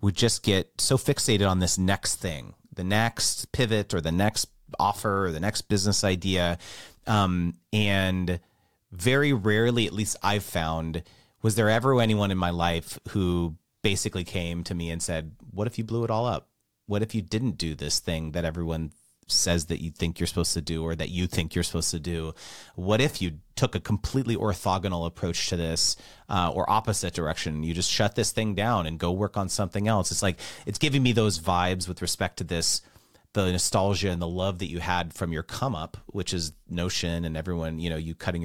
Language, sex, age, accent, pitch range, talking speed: English, male, 30-49, American, 85-110 Hz, 210 wpm